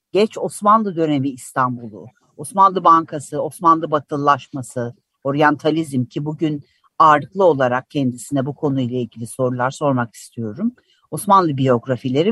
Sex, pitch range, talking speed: female, 130-165 Hz, 105 wpm